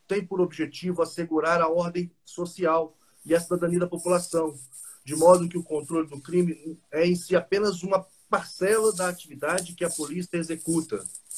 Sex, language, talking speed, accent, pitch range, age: male, Portuguese, 165 wpm, Brazilian, 155-180 Hz, 40-59